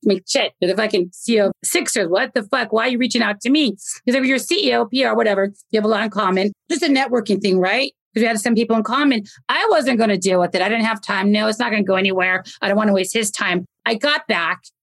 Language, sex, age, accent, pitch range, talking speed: English, female, 40-59, American, 190-245 Hz, 300 wpm